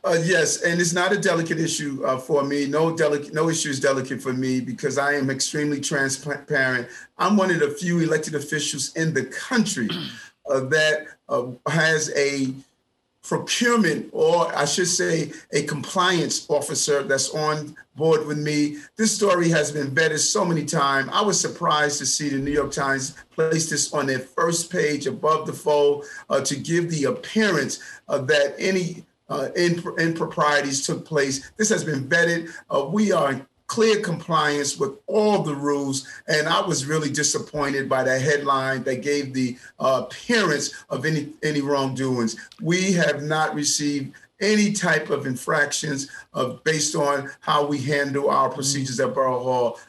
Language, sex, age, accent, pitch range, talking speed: English, male, 40-59, American, 140-165 Hz, 170 wpm